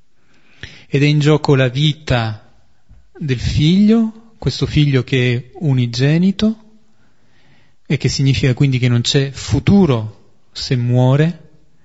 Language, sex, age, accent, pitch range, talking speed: Italian, male, 40-59, native, 120-150 Hz, 115 wpm